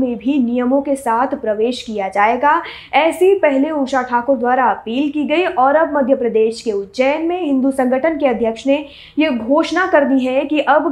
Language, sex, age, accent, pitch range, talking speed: Hindi, female, 20-39, native, 240-310 Hz, 190 wpm